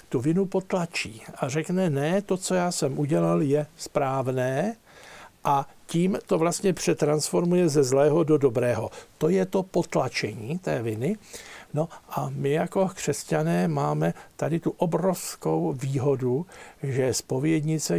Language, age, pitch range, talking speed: Slovak, 60-79, 135-170 Hz, 135 wpm